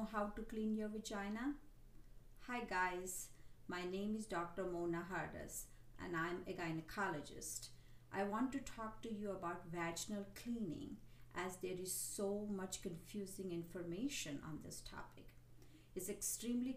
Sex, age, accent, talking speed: female, 50-69, Indian, 135 wpm